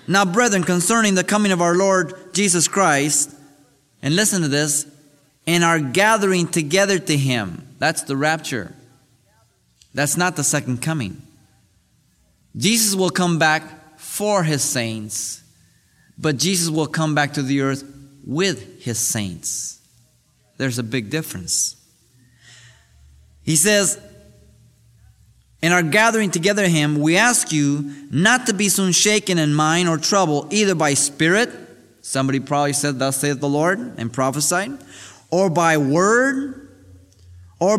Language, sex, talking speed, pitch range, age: English, male, 135 wpm, 135-190 Hz, 30-49